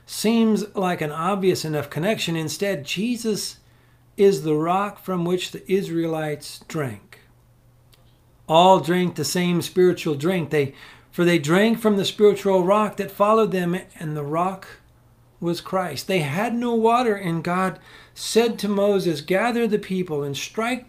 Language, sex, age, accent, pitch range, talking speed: English, male, 50-69, American, 125-195 Hz, 150 wpm